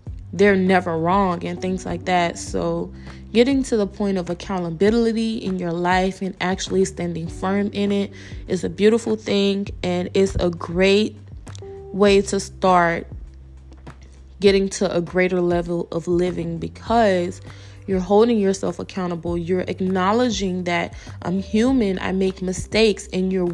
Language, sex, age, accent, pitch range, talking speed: English, female, 20-39, American, 170-210 Hz, 145 wpm